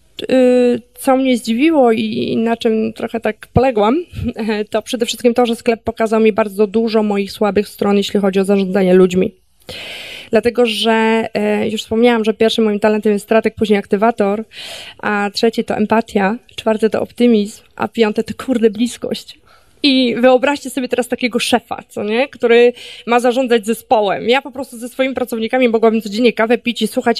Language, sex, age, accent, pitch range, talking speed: Polish, female, 20-39, native, 215-250 Hz, 165 wpm